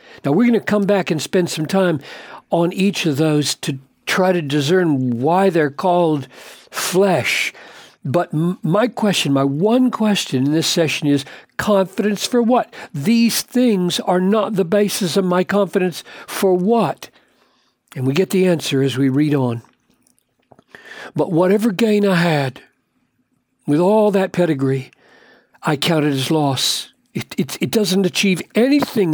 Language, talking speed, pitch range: English, 150 wpm, 150-205 Hz